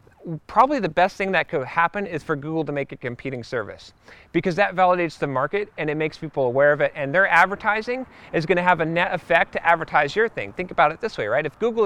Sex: male